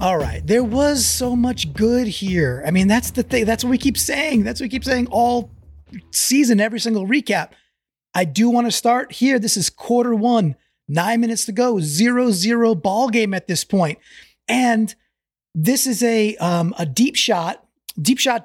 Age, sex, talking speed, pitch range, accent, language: 30-49, male, 190 wpm, 170-235 Hz, American, English